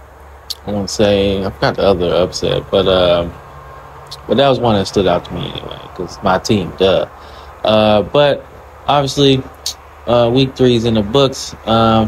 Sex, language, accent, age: male, English, American, 20-39